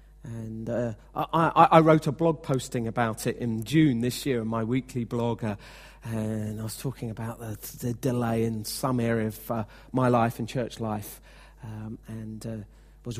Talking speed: 185 wpm